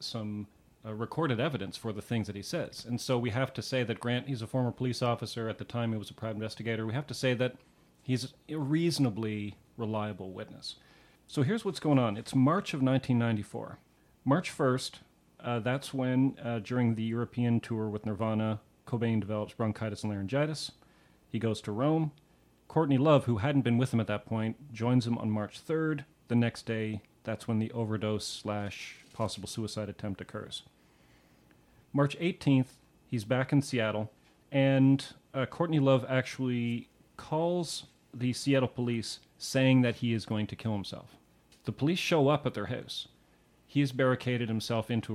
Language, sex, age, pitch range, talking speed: English, male, 40-59, 110-130 Hz, 175 wpm